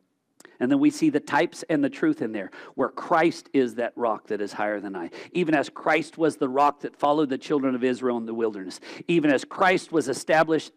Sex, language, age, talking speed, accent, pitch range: male, English, 50-69, 230 wpm, American, 150-225 Hz